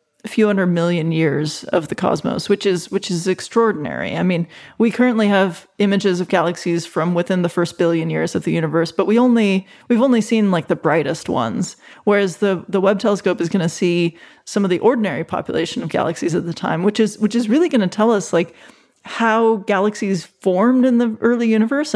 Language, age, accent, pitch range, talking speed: English, 30-49, American, 180-215 Hz, 205 wpm